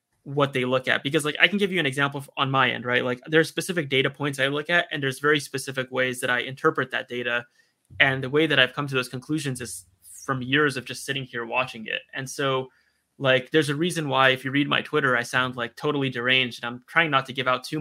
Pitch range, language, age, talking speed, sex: 130-150 Hz, English, 20-39, 265 wpm, male